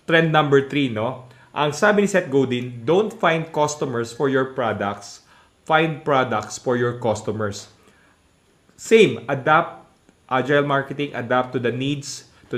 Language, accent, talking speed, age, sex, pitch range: English, Filipino, 140 wpm, 20-39, male, 120-145 Hz